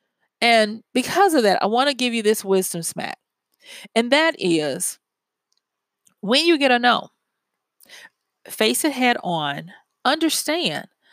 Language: English